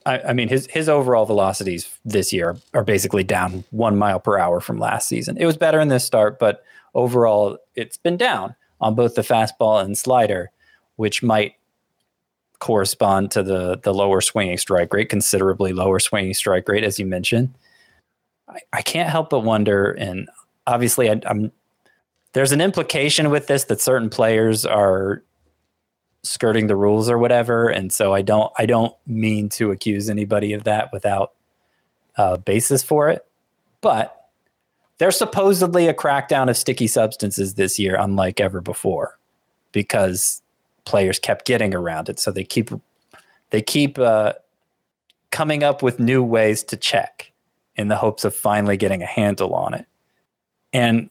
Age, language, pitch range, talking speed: 20-39, English, 100-125 Hz, 165 wpm